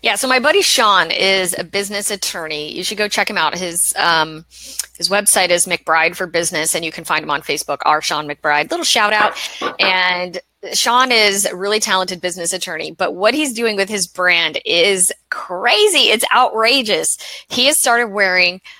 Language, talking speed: English, 190 wpm